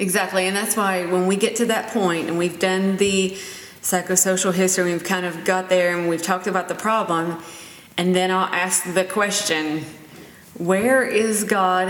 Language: English